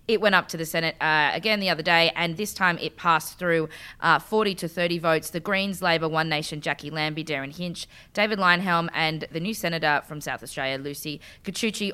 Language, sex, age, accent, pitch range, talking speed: English, female, 20-39, Australian, 155-190 Hz, 210 wpm